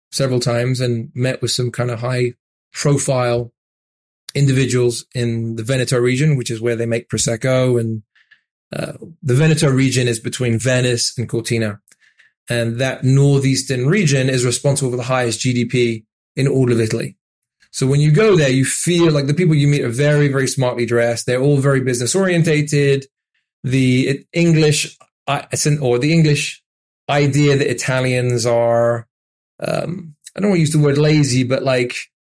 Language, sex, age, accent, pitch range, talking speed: English, male, 20-39, British, 120-145 Hz, 160 wpm